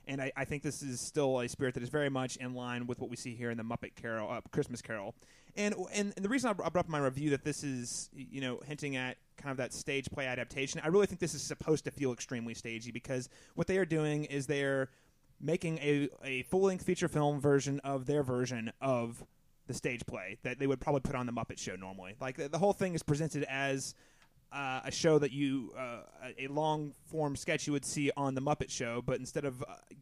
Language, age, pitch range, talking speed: English, 30-49, 125-150 Hz, 235 wpm